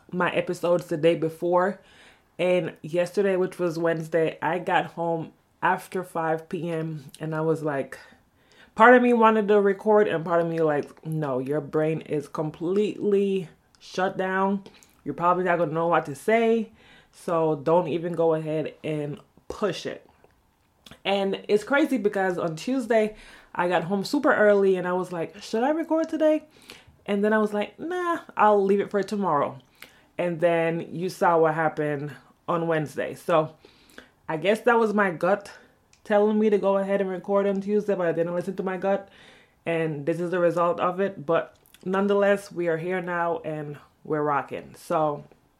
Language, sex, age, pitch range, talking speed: English, female, 20-39, 160-200 Hz, 175 wpm